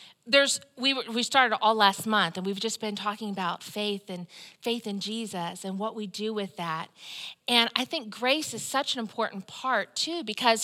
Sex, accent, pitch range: female, American, 200-295 Hz